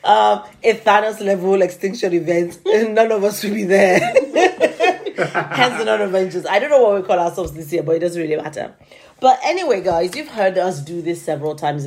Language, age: English, 30-49